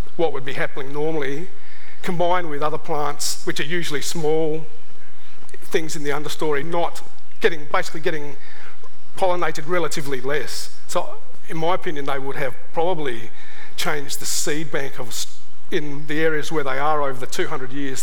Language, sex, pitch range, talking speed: English, male, 150-195 Hz, 160 wpm